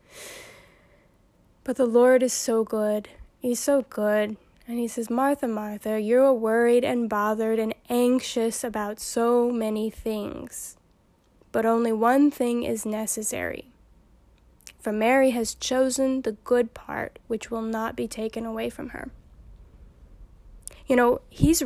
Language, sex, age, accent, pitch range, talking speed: English, female, 10-29, American, 220-255 Hz, 135 wpm